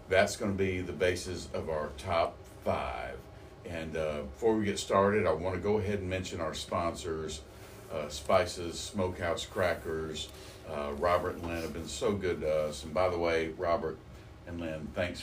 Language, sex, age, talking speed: English, male, 50-69, 185 wpm